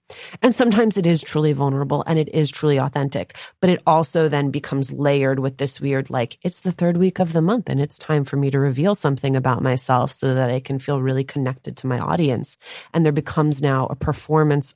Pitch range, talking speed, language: 135-165 Hz, 220 wpm, English